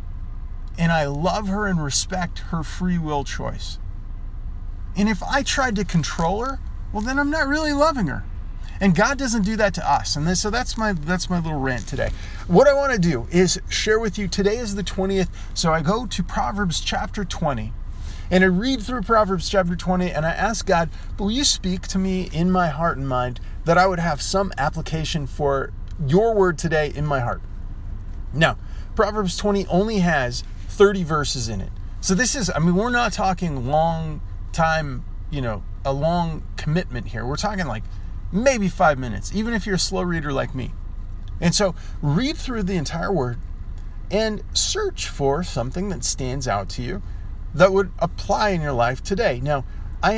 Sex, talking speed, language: male, 190 wpm, English